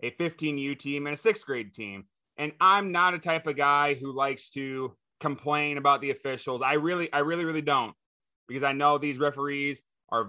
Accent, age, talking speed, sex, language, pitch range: American, 20-39, 205 wpm, male, English, 130-165 Hz